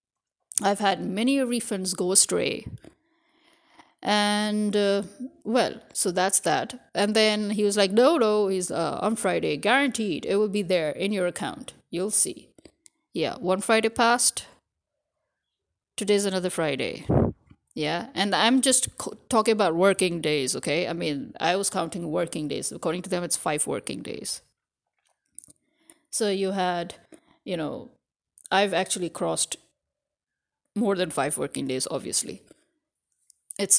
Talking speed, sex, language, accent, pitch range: 140 wpm, female, English, Indian, 185-245 Hz